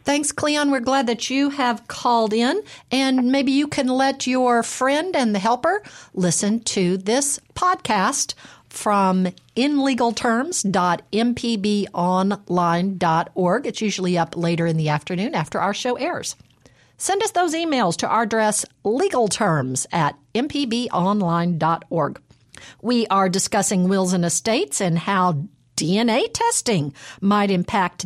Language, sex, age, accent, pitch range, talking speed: English, female, 50-69, American, 185-260 Hz, 125 wpm